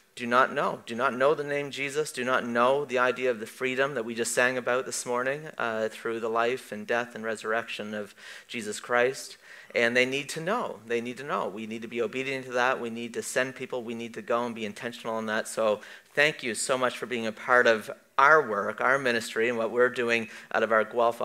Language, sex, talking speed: English, male, 245 wpm